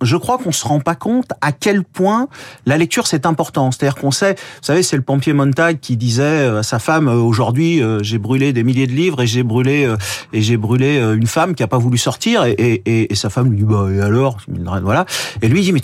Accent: French